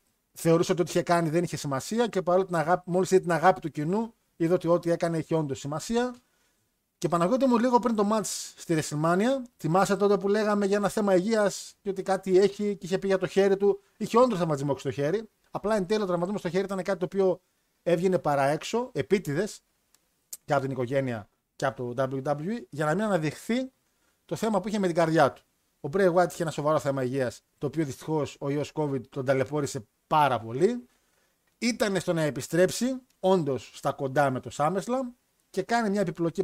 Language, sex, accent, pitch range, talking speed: Greek, male, native, 150-200 Hz, 200 wpm